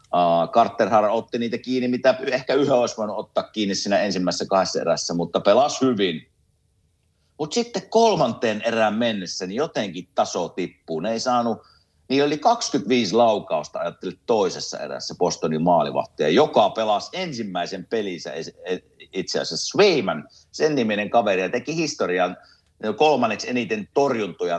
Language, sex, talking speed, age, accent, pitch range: Finnish, male, 130 wpm, 50-69, native, 90-130 Hz